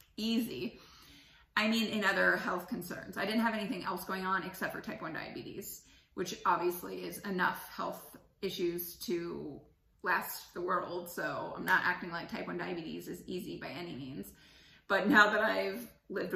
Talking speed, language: 170 wpm, English